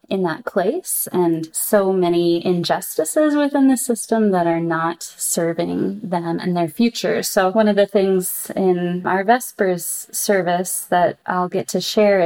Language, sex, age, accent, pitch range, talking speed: English, female, 20-39, American, 170-205 Hz, 155 wpm